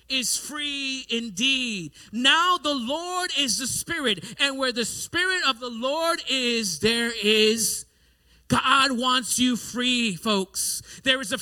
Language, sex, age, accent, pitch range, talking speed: English, male, 40-59, American, 195-300 Hz, 140 wpm